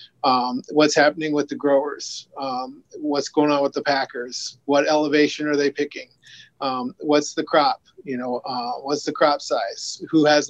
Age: 30-49